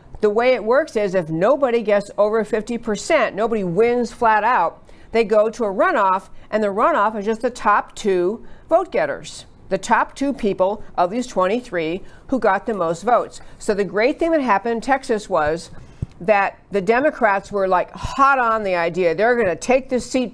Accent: American